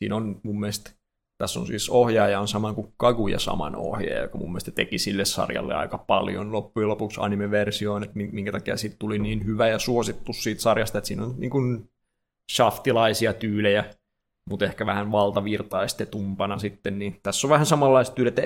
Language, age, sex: Finnish, 20-39, male